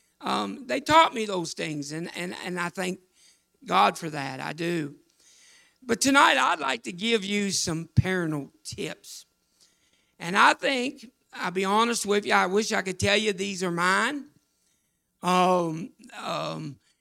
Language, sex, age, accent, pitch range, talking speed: English, male, 60-79, American, 180-225 Hz, 160 wpm